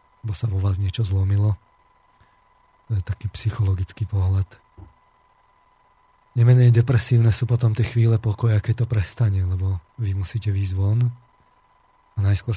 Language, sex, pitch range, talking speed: Slovak, male, 100-115 Hz, 125 wpm